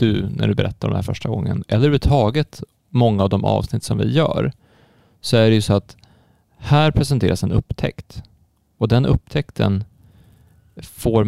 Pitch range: 100-130 Hz